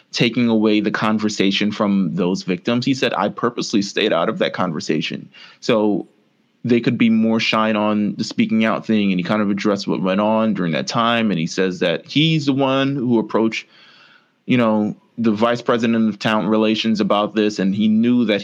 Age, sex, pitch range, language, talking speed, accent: 20-39, male, 105-120 Hz, English, 200 wpm, American